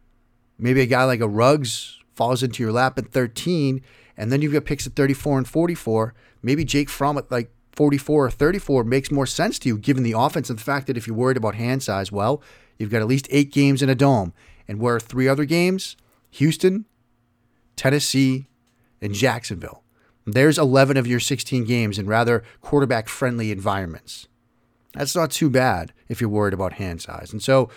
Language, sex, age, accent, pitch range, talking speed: English, male, 30-49, American, 115-140 Hz, 190 wpm